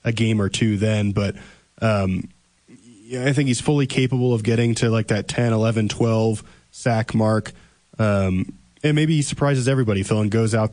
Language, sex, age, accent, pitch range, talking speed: English, male, 20-39, American, 105-120 Hz, 180 wpm